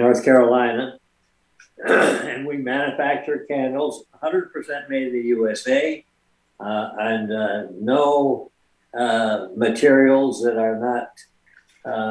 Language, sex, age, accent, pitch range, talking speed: English, male, 60-79, American, 110-130 Hz, 105 wpm